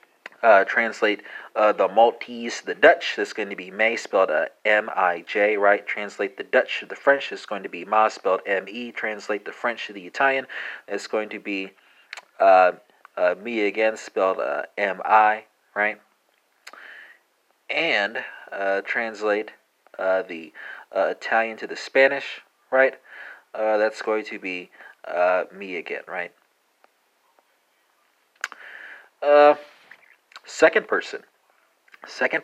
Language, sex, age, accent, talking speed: English, male, 30-49, American, 130 wpm